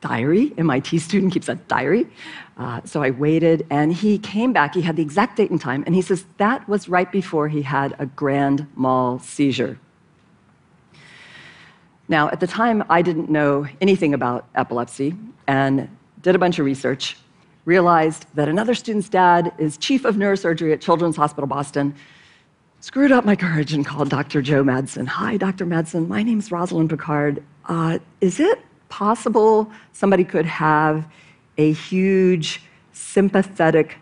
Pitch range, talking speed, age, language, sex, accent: 140-185 Hz, 155 wpm, 50-69, Spanish, female, American